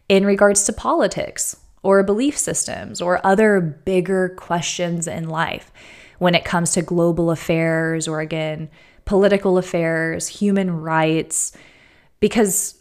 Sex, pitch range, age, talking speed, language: female, 165-195 Hz, 20-39, 120 wpm, English